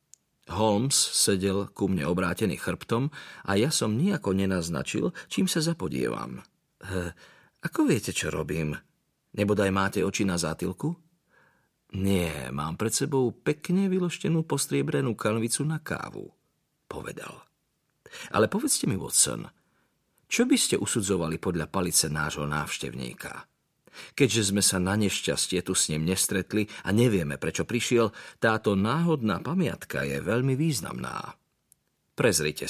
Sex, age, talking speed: male, 40-59, 125 wpm